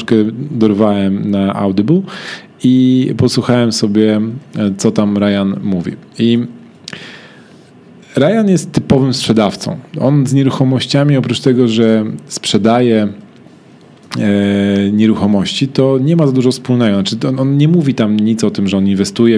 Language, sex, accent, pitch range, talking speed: Polish, male, native, 100-130 Hz, 125 wpm